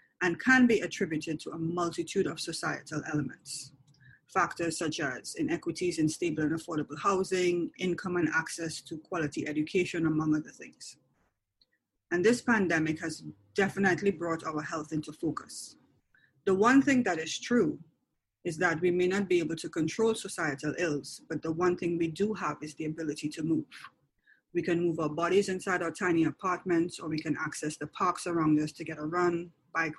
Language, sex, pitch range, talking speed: English, female, 155-190 Hz, 180 wpm